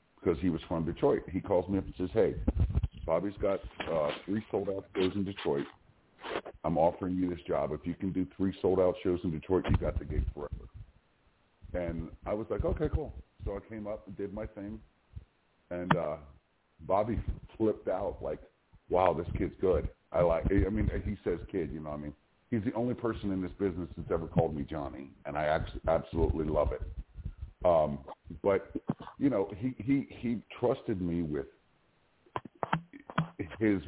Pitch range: 80-100 Hz